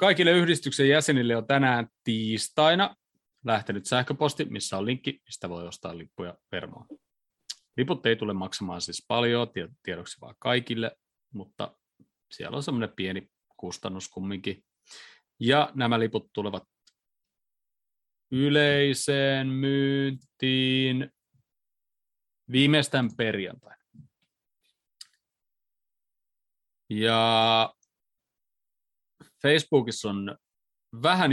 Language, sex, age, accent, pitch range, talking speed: Finnish, male, 30-49, native, 100-130 Hz, 85 wpm